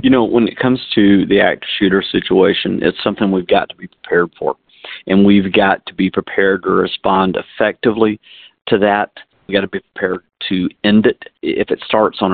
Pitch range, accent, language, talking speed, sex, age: 95-110 Hz, American, English, 200 wpm, male, 50-69